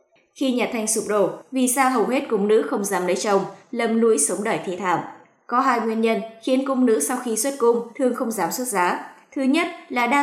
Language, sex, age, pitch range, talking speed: Vietnamese, female, 20-39, 190-255 Hz, 240 wpm